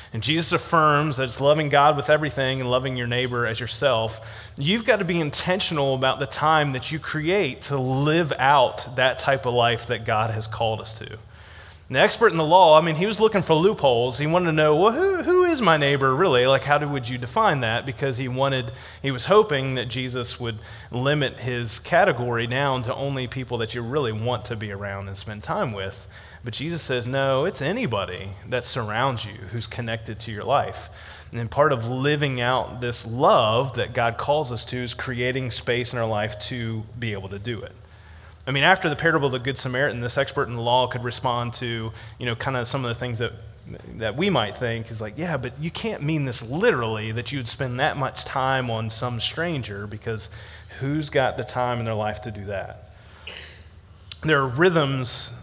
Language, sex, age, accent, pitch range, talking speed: English, male, 30-49, American, 110-140 Hz, 210 wpm